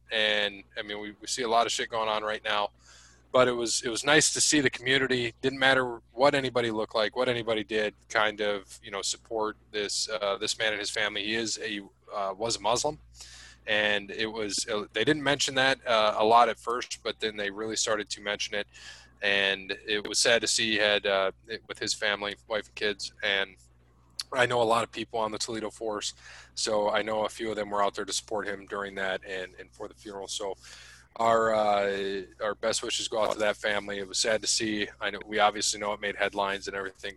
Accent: American